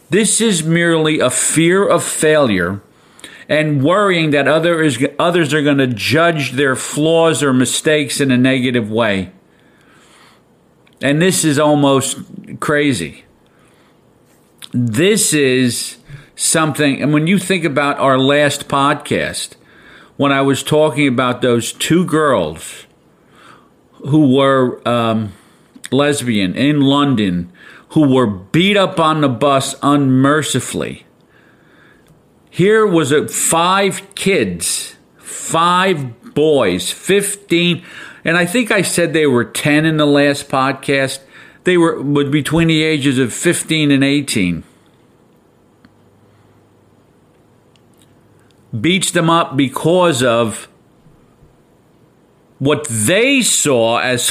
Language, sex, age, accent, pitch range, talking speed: English, male, 50-69, American, 125-165 Hz, 110 wpm